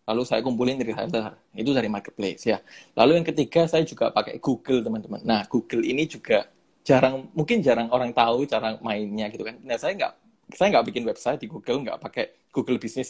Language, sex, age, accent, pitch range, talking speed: Indonesian, male, 20-39, native, 110-145 Hz, 195 wpm